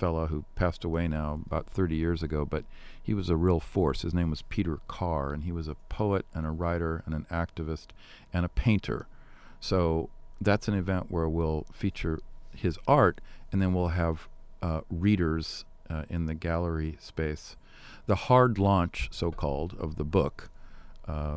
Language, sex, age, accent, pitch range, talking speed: English, male, 50-69, American, 75-85 Hz, 175 wpm